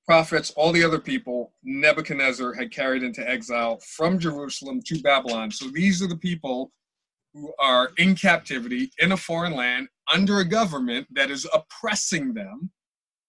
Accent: American